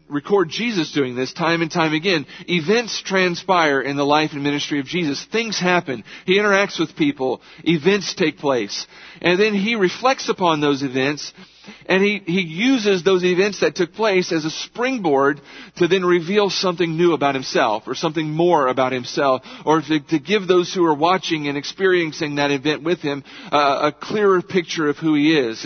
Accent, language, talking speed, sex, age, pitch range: American, English, 185 wpm, male, 50-69, 145-180 Hz